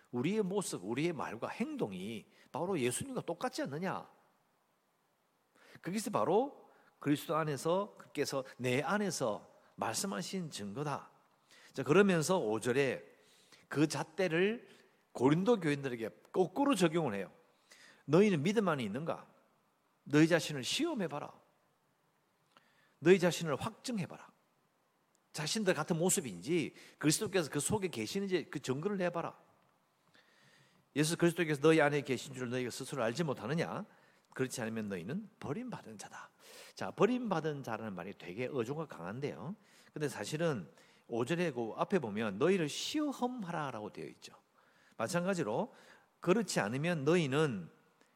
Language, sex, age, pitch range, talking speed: English, male, 50-69, 135-200 Hz, 105 wpm